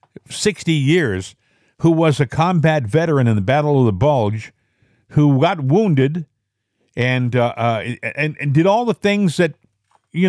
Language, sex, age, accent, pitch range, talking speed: English, male, 60-79, American, 115-170 Hz, 155 wpm